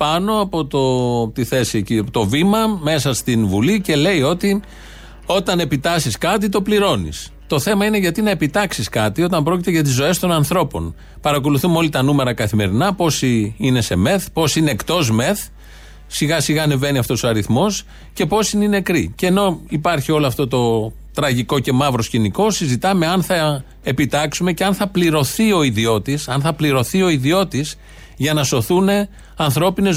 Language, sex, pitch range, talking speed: Greek, male, 130-185 Hz, 170 wpm